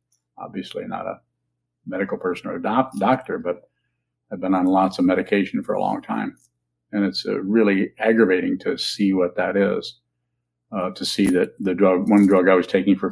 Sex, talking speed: male, 190 wpm